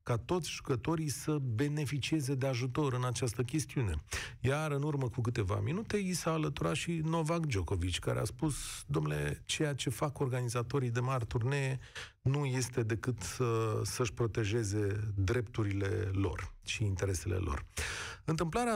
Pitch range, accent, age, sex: 110-150 Hz, native, 40-59, male